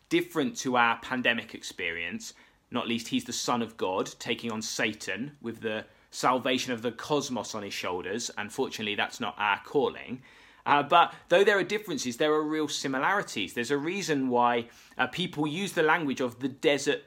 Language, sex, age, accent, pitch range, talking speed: English, male, 20-39, British, 130-180 Hz, 180 wpm